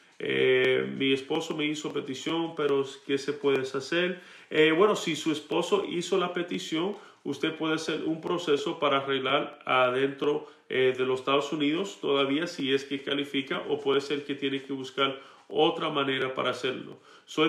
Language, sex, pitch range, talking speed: Spanish, male, 135-170 Hz, 170 wpm